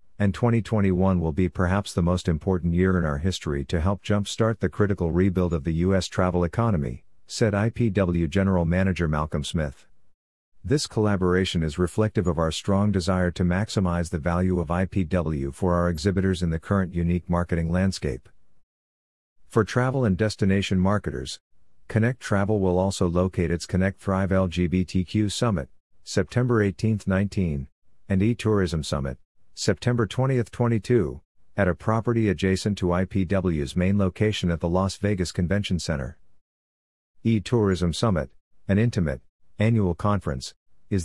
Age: 50-69